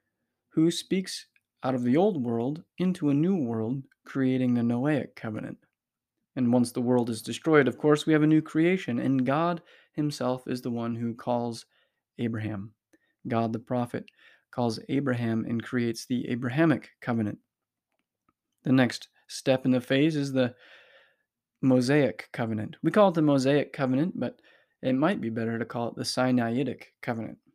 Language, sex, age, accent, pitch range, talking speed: English, male, 20-39, American, 115-150 Hz, 160 wpm